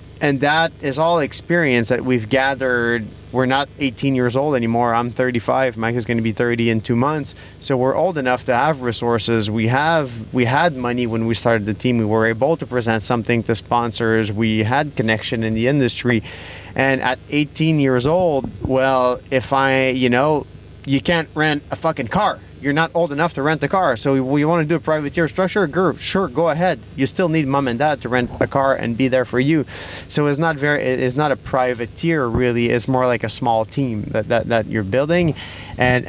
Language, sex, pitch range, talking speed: French, male, 115-145 Hz, 215 wpm